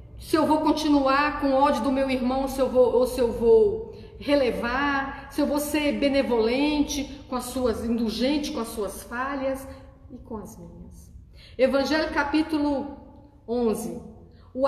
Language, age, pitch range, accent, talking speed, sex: Portuguese, 40-59, 240-320 Hz, Brazilian, 135 wpm, female